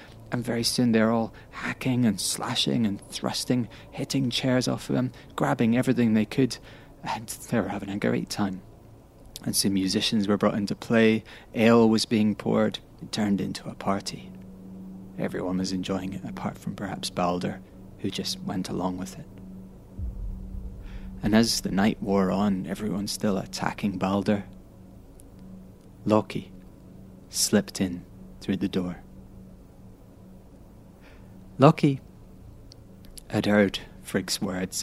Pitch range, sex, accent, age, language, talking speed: 95-110 Hz, male, British, 20-39, English, 135 wpm